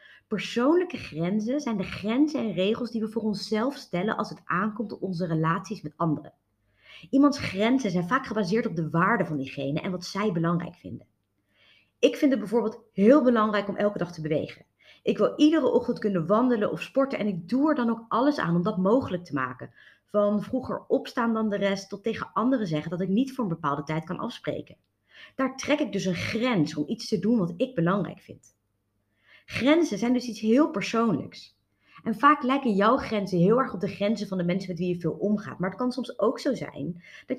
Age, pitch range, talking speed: 30-49, 170-250 Hz, 210 wpm